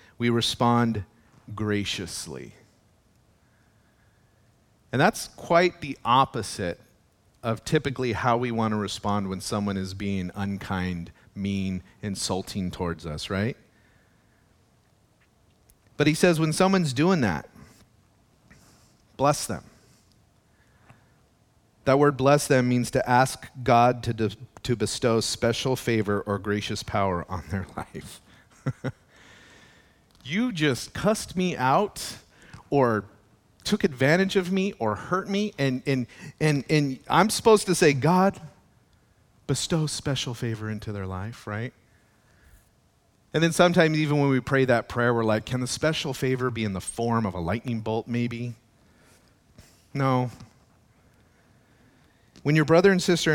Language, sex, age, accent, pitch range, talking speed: English, male, 40-59, American, 105-135 Hz, 125 wpm